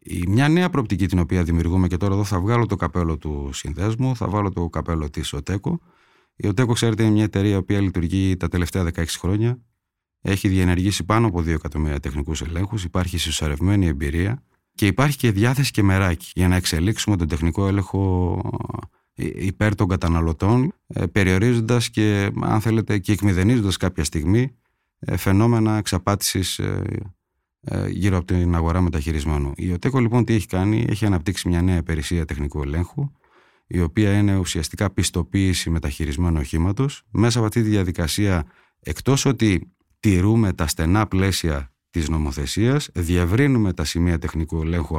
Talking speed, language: 150 wpm, Greek